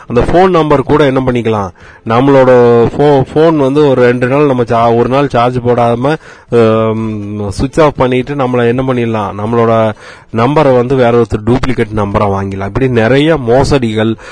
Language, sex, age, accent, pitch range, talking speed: Tamil, male, 30-49, native, 105-135 Hz, 145 wpm